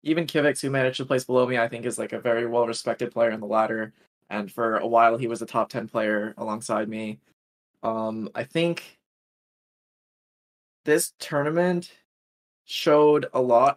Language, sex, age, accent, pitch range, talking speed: English, male, 20-39, American, 115-135 Hz, 175 wpm